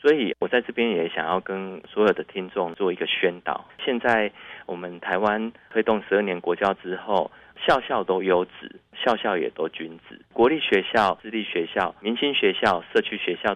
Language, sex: Chinese, male